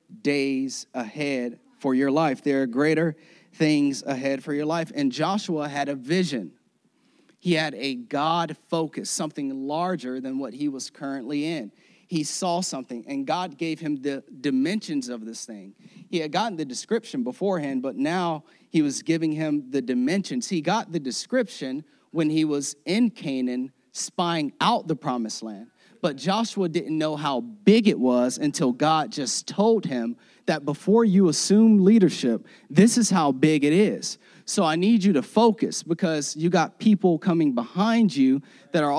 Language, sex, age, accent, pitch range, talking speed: English, male, 30-49, American, 145-200 Hz, 170 wpm